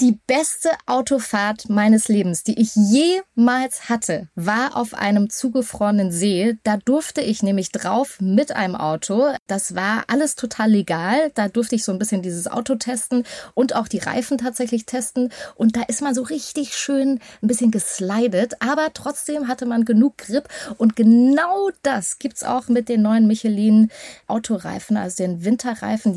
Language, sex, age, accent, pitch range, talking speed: German, female, 20-39, German, 195-250 Hz, 165 wpm